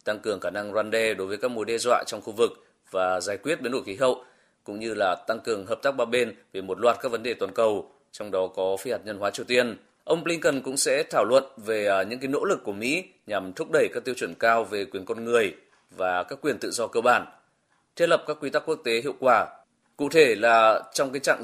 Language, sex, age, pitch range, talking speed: Vietnamese, male, 20-39, 105-140 Hz, 265 wpm